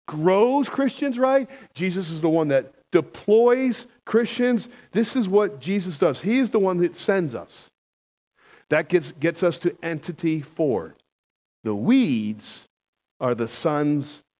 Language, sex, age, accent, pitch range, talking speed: English, male, 50-69, American, 150-210 Hz, 140 wpm